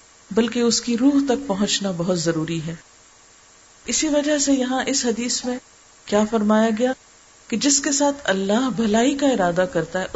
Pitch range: 185-245 Hz